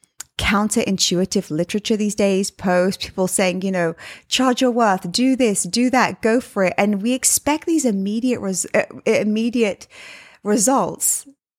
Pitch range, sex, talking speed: 205-265 Hz, female, 145 wpm